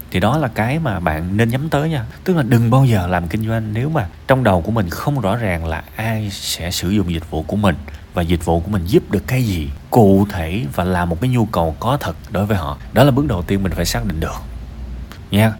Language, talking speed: Vietnamese, 265 wpm